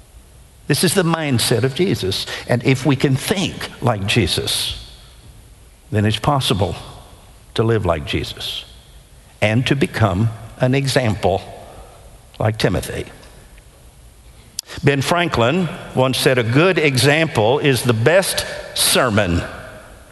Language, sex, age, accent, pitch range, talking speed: English, male, 60-79, American, 120-165 Hz, 115 wpm